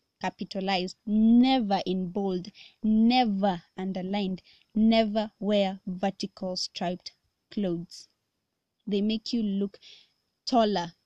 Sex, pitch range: female, 190-230 Hz